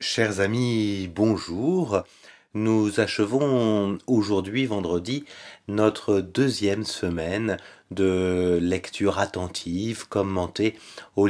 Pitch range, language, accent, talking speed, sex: 100-120 Hz, French, French, 80 wpm, male